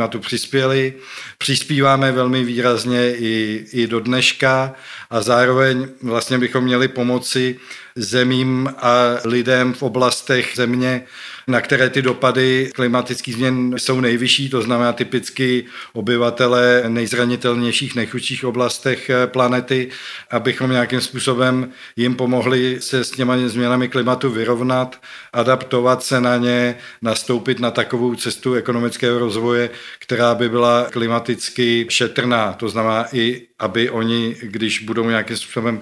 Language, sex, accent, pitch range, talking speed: Czech, male, native, 115-125 Hz, 120 wpm